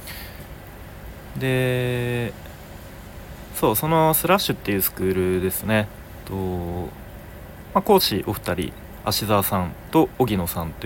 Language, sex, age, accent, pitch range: Japanese, male, 40-59, native, 90-140 Hz